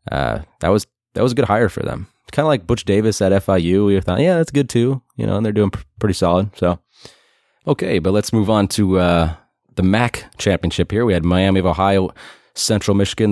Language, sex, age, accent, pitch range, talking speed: English, male, 20-39, American, 90-120 Hz, 225 wpm